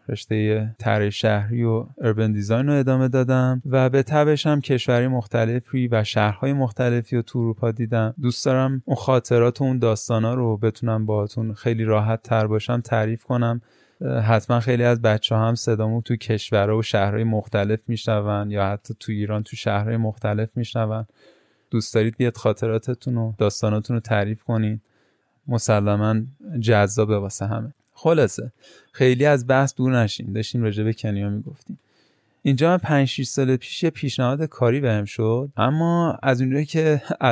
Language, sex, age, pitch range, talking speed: Persian, male, 20-39, 110-130 Hz, 160 wpm